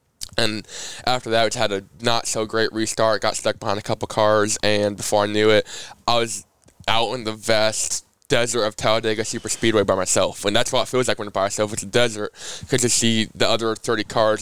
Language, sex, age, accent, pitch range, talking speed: English, male, 10-29, American, 105-115 Hz, 215 wpm